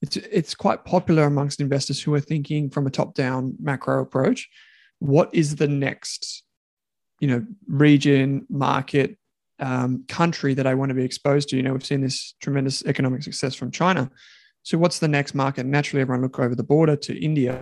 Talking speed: 185 wpm